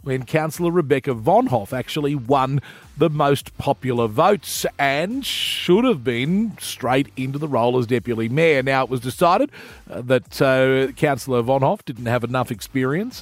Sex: male